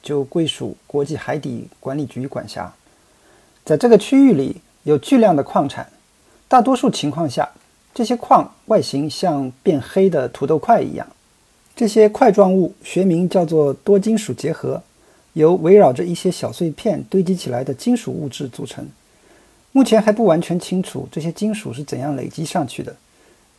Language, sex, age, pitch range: Chinese, male, 50-69, 145-205 Hz